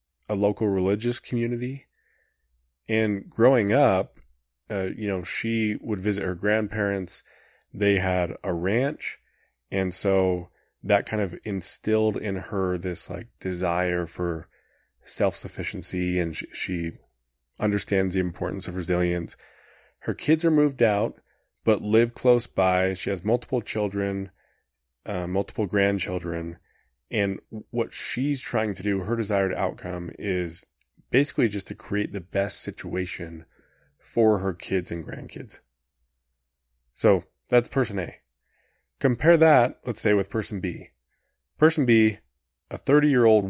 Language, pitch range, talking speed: English, 90-110 Hz, 130 wpm